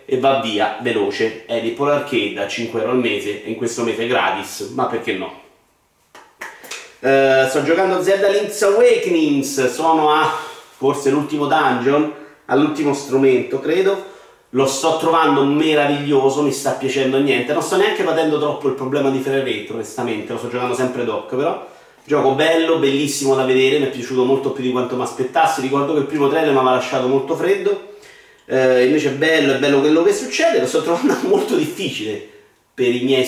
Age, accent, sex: 30-49, native, male